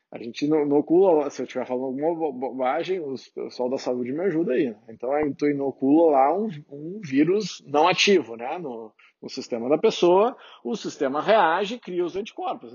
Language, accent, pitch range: Portuguese, Brazilian, 150-220 Hz